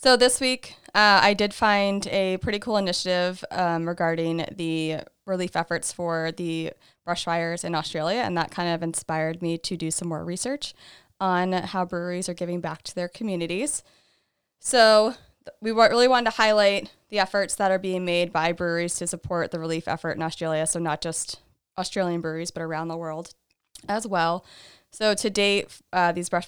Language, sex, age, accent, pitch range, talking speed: English, female, 20-39, American, 165-195 Hz, 180 wpm